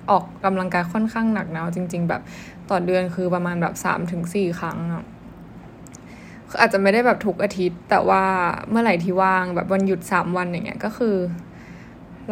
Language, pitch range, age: Thai, 180-215 Hz, 10-29